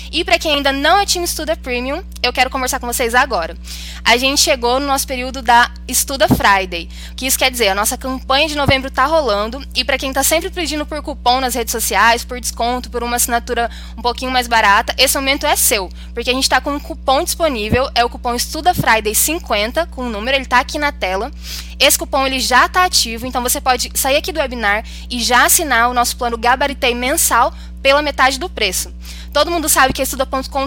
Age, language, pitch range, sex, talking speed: 10-29, Portuguese, 235-290 Hz, female, 220 wpm